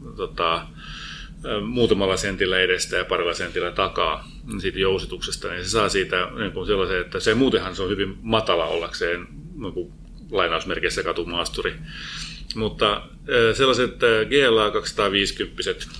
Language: Finnish